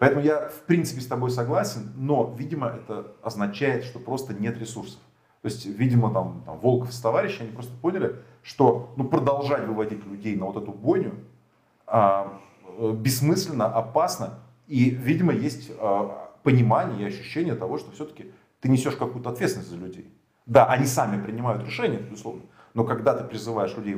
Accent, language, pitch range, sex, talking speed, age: native, Russian, 110-135 Hz, male, 165 wpm, 30-49